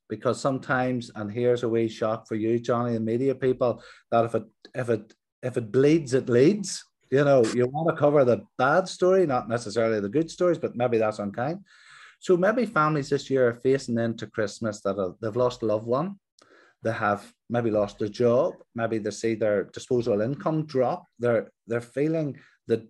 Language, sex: English, male